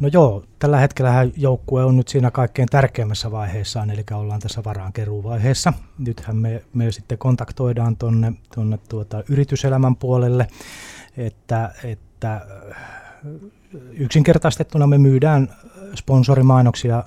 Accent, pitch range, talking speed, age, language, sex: native, 105-125 Hz, 105 wpm, 20-39, Finnish, male